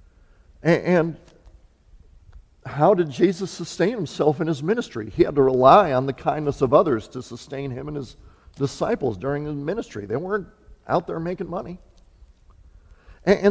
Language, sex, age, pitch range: English, male, 50-69, 115-175 Hz